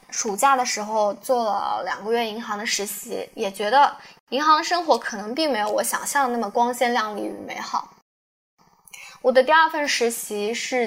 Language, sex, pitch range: Chinese, female, 215-270 Hz